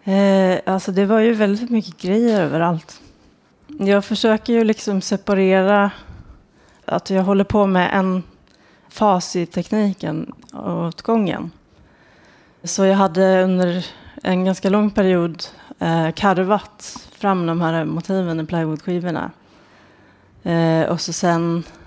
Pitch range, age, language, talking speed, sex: 165-195 Hz, 30-49, Swedish, 125 wpm, female